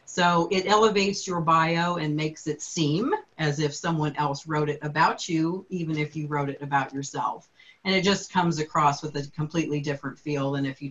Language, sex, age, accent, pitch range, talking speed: English, female, 40-59, American, 145-175 Hz, 205 wpm